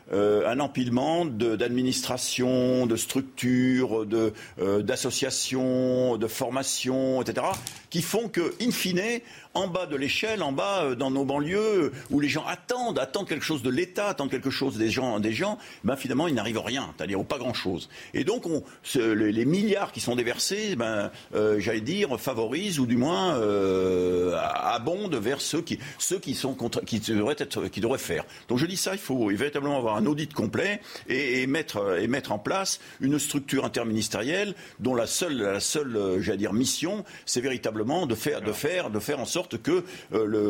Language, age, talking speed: French, 50-69, 190 wpm